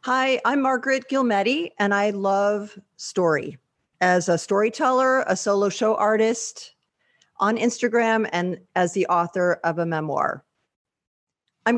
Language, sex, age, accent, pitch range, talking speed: English, female, 50-69, American, 180-230 Hz, 125 wpm